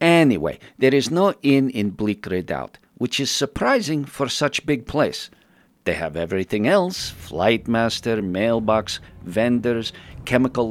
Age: 50-69